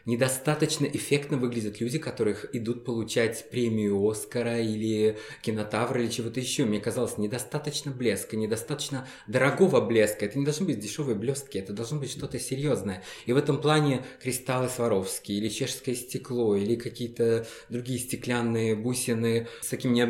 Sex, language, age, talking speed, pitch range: male, Russian, 20-39, 145 wpm, 115-145 Hz